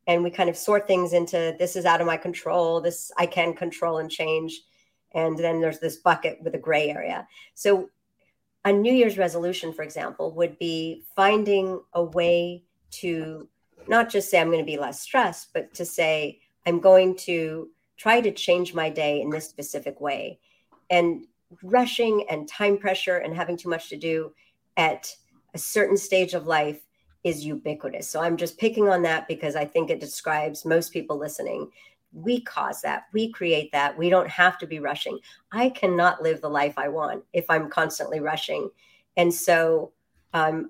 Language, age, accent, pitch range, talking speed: English, 50-69, American, 160-180 Hz, 185 wpm